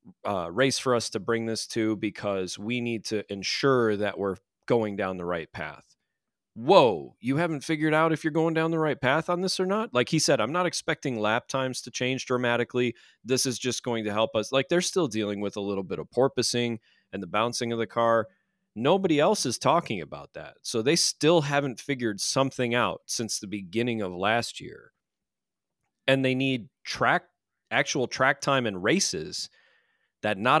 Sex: male